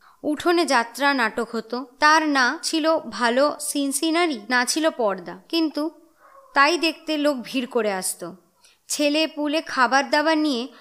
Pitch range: 245-320 Hz